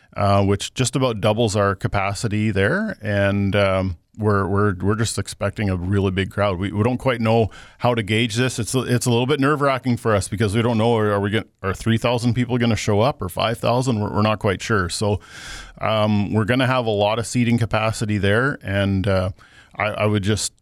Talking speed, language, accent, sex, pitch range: 225 wpm, English, American, male, 100-115 Hz